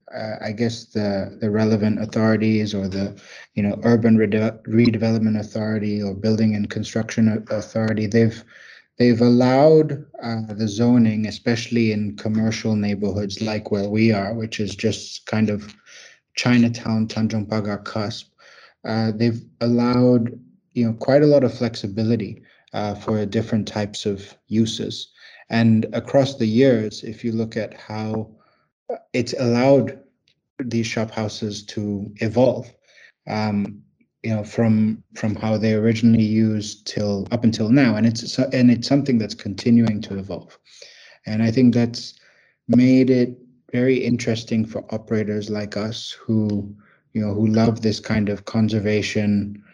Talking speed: 140 wpm